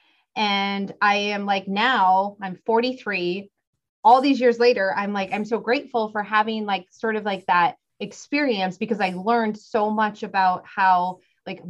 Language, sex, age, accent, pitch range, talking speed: English, female, 20-39, American, 185-220 Hz, 165 wpm